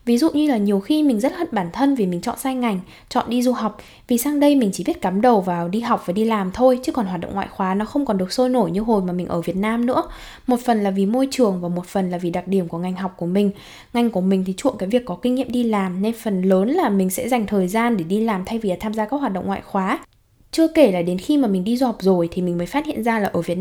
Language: Vietnamese